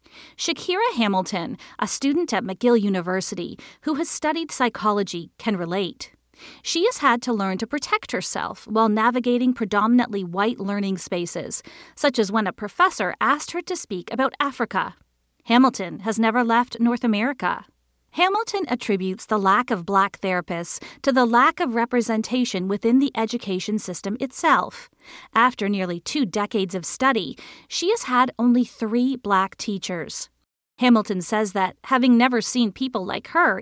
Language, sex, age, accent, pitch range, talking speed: English, female, 40-59, American, 200-265 Hz, 150 wpm